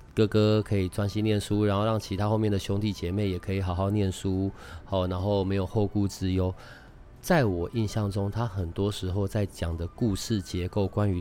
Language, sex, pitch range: Chinese, male, 95-110 Hz